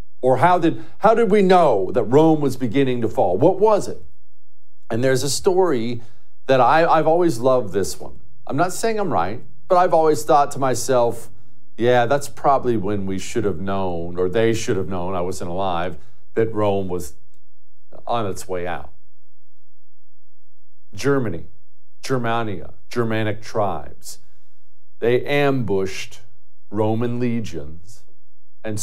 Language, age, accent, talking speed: English, 50-69, American, 145 wpm